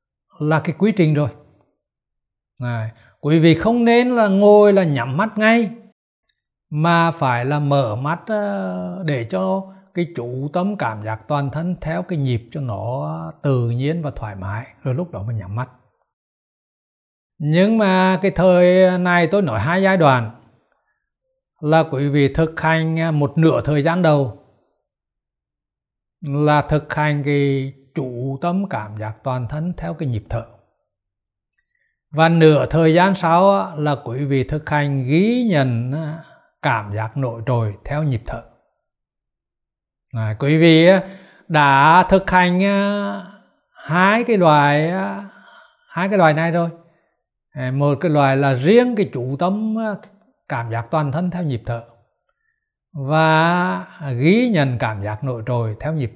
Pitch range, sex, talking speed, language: 125-180 Hz, male, 145 wpm, Vietnamese